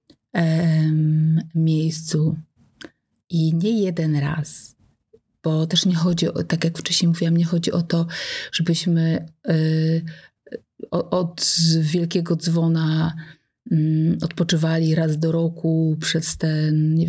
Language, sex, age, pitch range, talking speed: Polish, female, 30-49, 160-185 Hz, 110 wpm